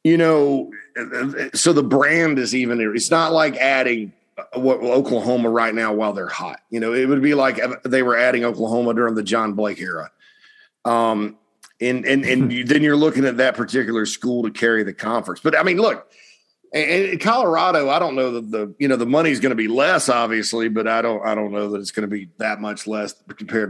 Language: English